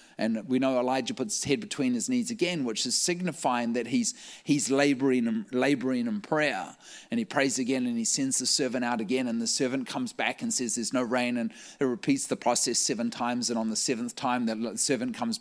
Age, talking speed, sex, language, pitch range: 30-49, 220 wpm, male, English, 120-165 Hz